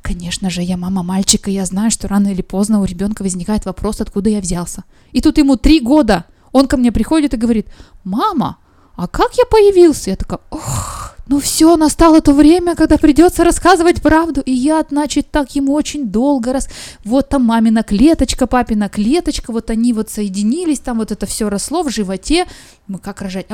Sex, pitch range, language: female, 205-285 Hz, Russian